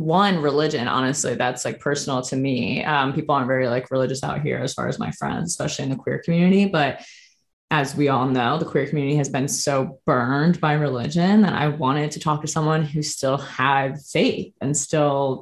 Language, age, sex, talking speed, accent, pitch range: English, 20-39, female, 205 wpm, American, 140-170 Hz